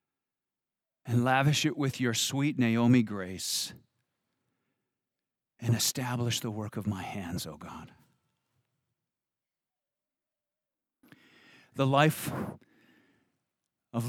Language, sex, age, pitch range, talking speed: English, male, 50-69, 120-150 Hz, 90 wpm